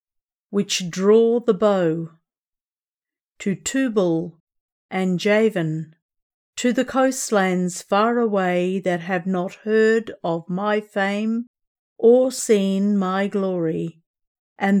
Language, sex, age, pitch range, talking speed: English, female, 50-69, 185-225 Hz, 100 wpm